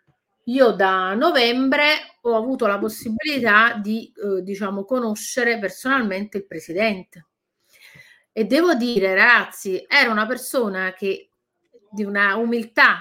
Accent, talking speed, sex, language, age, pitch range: native, 115 wpm, female, Italian, 30-49, 215-280 Hz